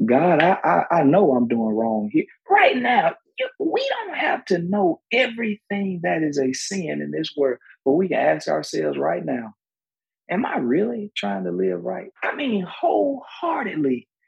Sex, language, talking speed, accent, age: male, English, 170 wpm, American, 40-59